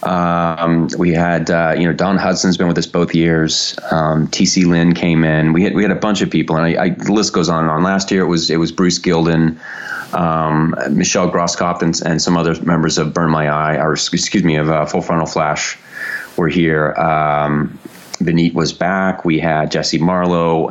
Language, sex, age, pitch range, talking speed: English, male, 30-49, 80-90 Hz, 210 wpm